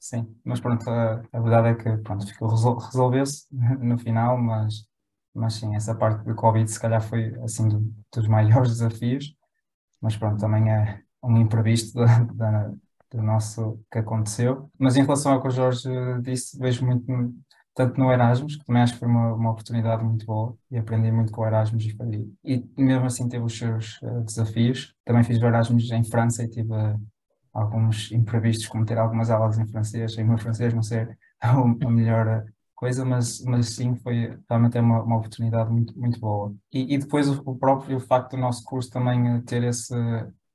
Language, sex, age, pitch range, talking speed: Portuguese, male, 20-39, 110-125 Hz, 190 wpm